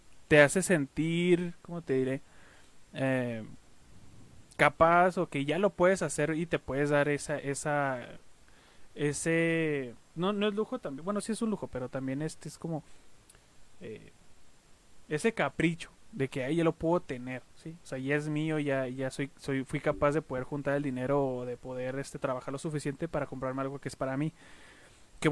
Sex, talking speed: male, 185 wpm